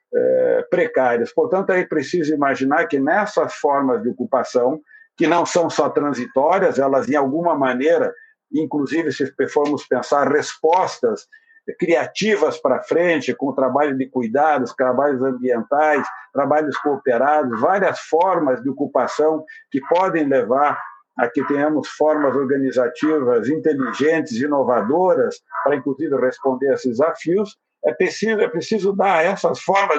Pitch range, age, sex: 145-215 Hz, 60-79, male